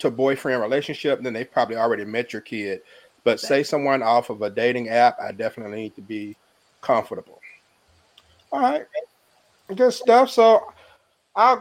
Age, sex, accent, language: 40-59, male, American, English